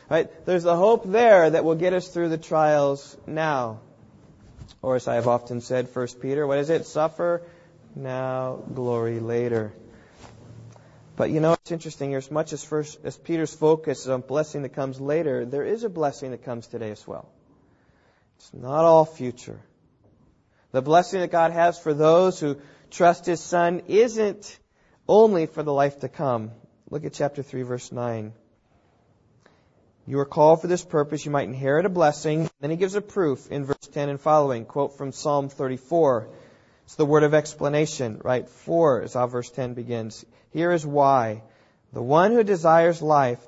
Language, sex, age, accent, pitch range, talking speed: English, male, 30-49, American, 125-160 Hz, 175 wpm